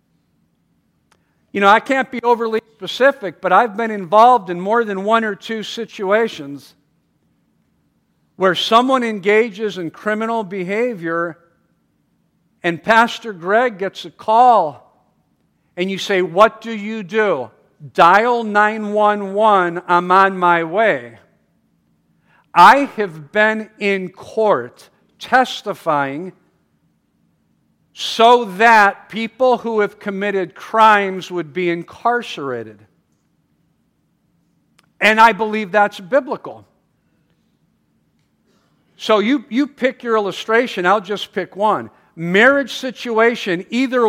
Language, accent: English, American